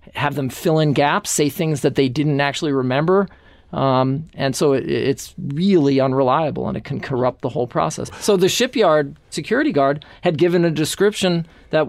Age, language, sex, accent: 40-59, English, male, American